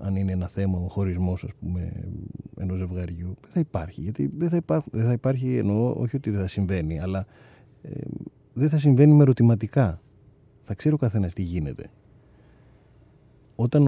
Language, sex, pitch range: Greek, male, 100-135 Hz